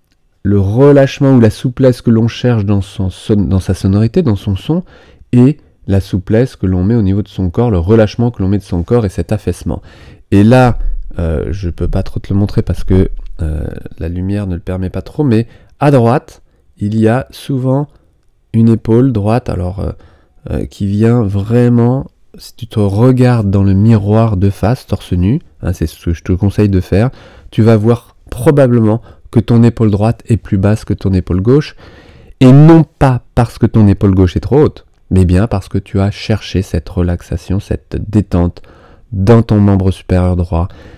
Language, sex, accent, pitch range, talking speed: French, male, French, 90-115 Hz, 200 wpm